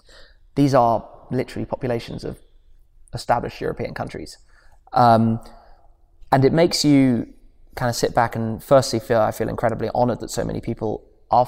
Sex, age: male, 20-39